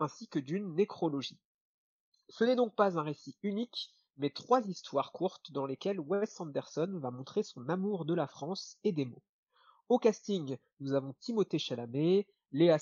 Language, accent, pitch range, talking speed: French, French, 145-200 Hz, 170 wpm